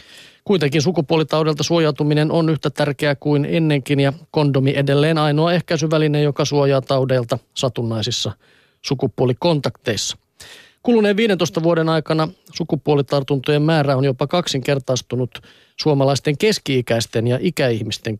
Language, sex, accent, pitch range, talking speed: Finnish, male, native, 130-155 Hz, 100 wpm